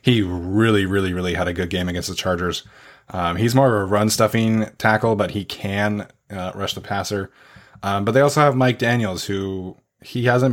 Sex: male